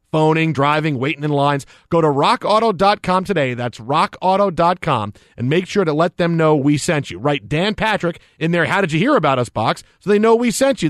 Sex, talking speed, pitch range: male, 215 wpm, 145-205 Hz